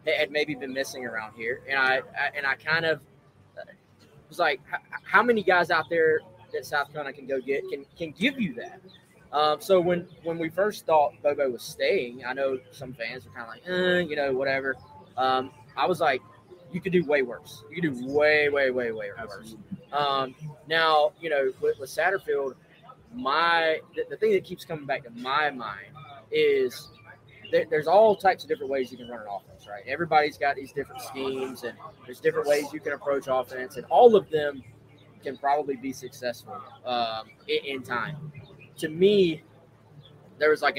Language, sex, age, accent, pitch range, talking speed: English, male, 20-39, American, 130-170 Hz, 195 wpm